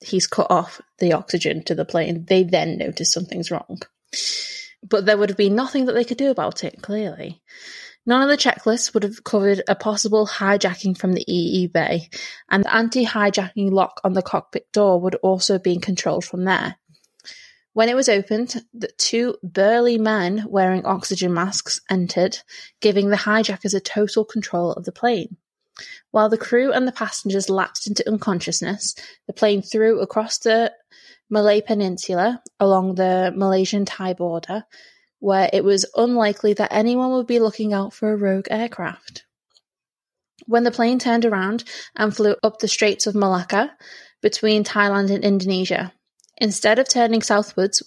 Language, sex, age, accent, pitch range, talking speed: English, female, 20-39, British, 190-225 Hz, 165 wpm